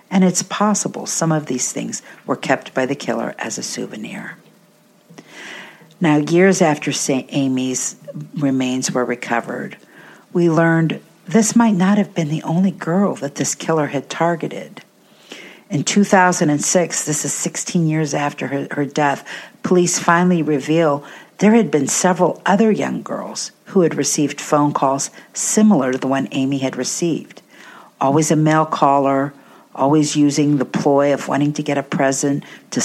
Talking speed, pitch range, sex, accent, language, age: 155 wpm, 140-185 Hz, female, American, English, 50-69